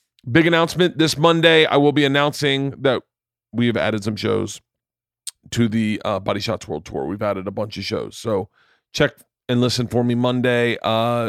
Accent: American